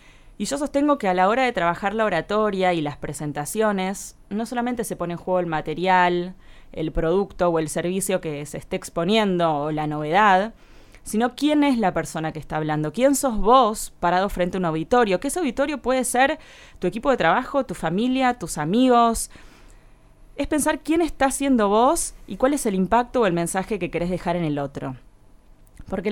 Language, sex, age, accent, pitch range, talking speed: Spanish, female, 20-39, Argentinian, 160-230 Hz, 195 wpm